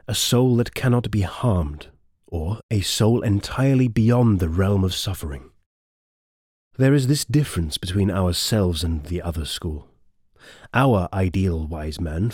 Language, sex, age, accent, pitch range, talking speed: English, male, 30-49, British, 90-125 Hz, 140 wpm